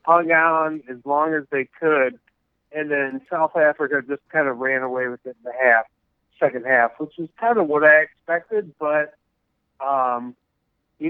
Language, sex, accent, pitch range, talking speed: English, male, American, 130-160 Hz, 180 wpm